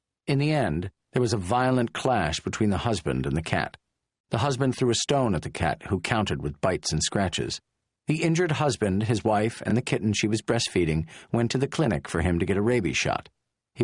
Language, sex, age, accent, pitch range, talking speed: English, male, 50-69, American, 95-125 Hz, 220 wpm